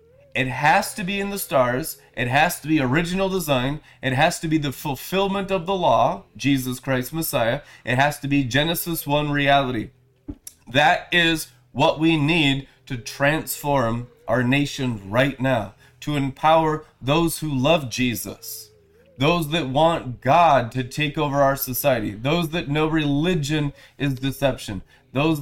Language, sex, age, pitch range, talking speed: English, male, 30-49, 135-175 Hz, 155 wpm